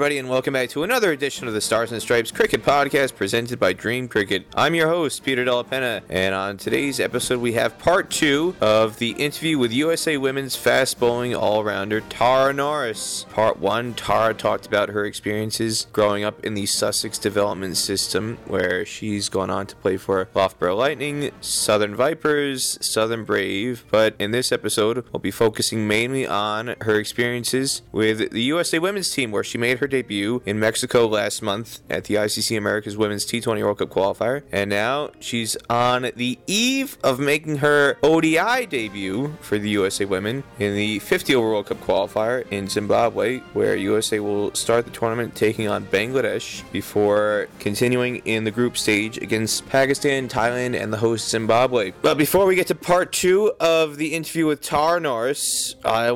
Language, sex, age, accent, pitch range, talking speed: English, male, 20-39, American, 105-140 Hz, 175 wpm